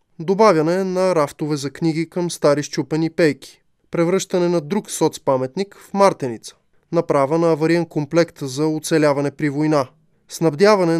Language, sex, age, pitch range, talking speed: Bulgarian, male, 20-39, 145-185 Hz, 130 wpm